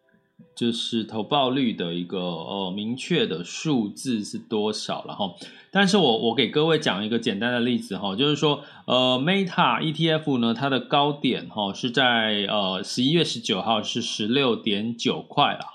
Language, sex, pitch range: Chinese, male, 110-150 Hz